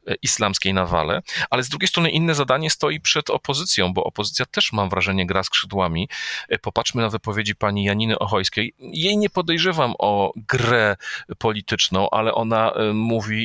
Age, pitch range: 40-59, 95-110 Hz